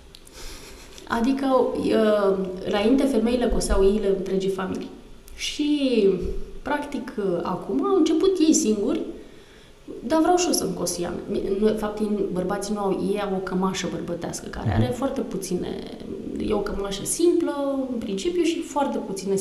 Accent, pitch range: native, 175-250 Hz